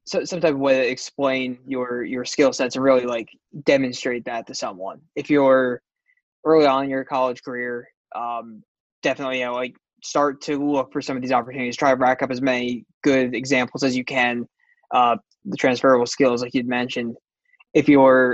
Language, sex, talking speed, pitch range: English, male, 190 wpm, 125-145 Hz